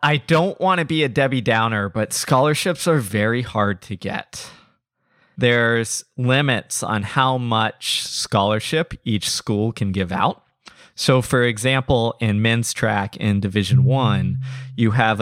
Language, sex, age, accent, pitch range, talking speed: English, male, 20-39, American, 105-130 Hz, 145 wpm